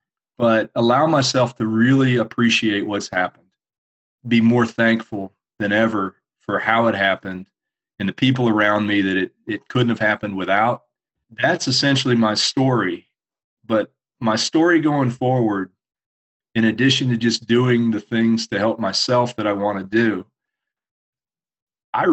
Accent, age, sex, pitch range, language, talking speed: American, 40-59, male, 105-125 Hz, English, 145 wpm